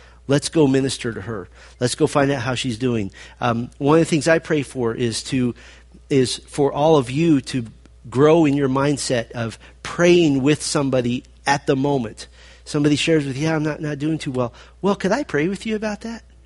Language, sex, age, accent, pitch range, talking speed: English, male, 40-59, American, 115-160 Hz, 210 wpm